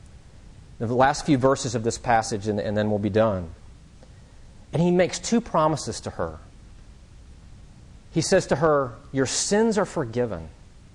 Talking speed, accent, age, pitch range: 155 wpm, American, 40-59, 100-150 Hz